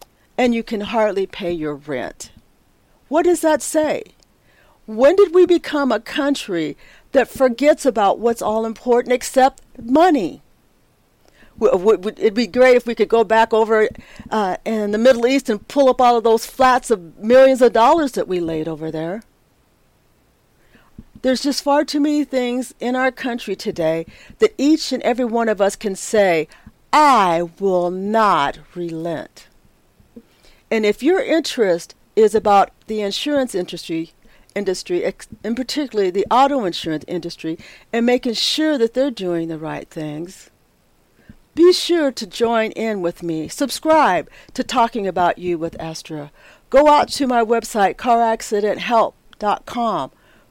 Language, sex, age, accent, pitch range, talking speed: English, female, 50-69, American, 195-270 Hz, 145 wpm